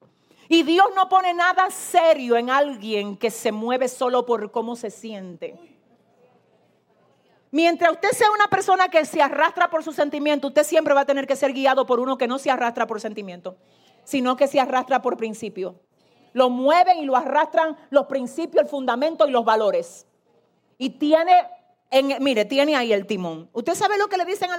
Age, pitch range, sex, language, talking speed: 40-59, 230-320 Hz, female, Spanish, 185 wpm